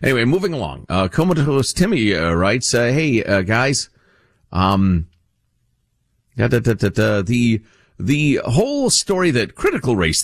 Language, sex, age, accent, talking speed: English, male, 50-69, American, 135 wpm